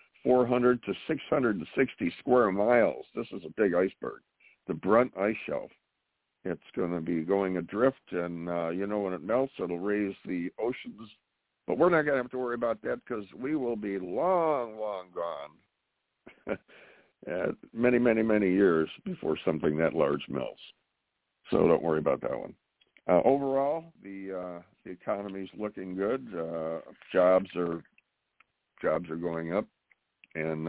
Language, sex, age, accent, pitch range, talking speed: English, male, 60-79, American, 90-115 Hz, 155 wpm